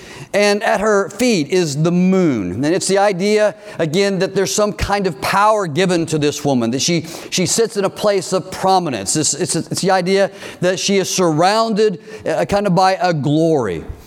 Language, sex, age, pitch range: English, male, 50-69, 160-200 Hz